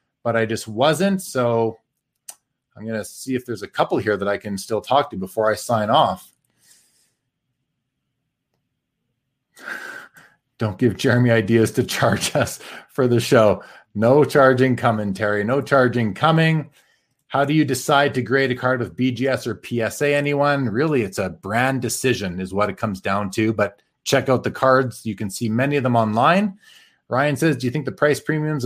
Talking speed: 180 wpm